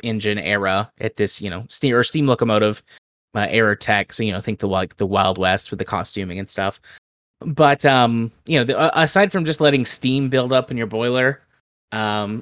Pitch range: 105-130 Hz